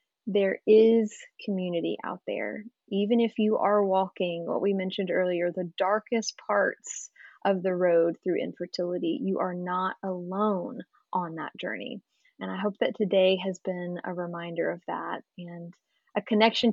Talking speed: 155 wpm